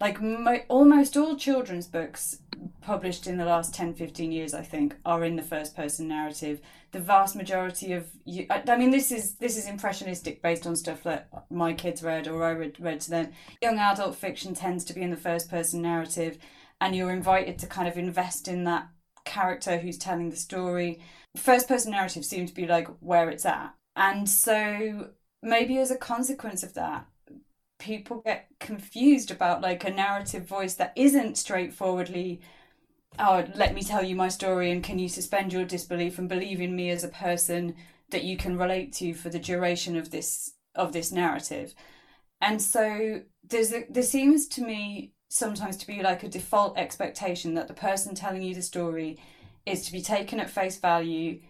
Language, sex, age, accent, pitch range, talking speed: English, female, 20-39, British, 170-205 Hz, 190 wpm